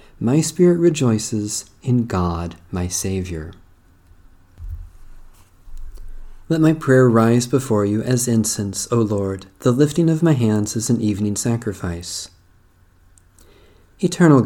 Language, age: English, 40-59